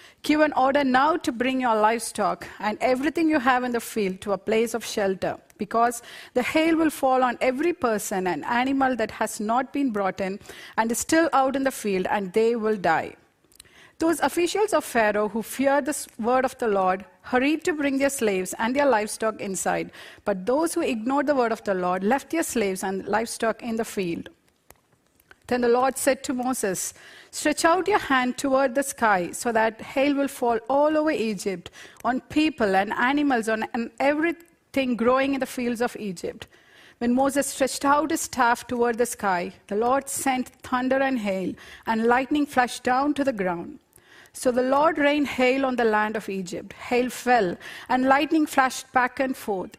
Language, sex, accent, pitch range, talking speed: English, female, Indian, 220-280 Hz, 190 wpm